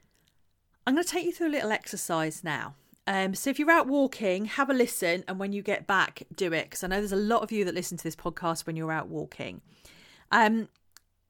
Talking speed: 230 wpm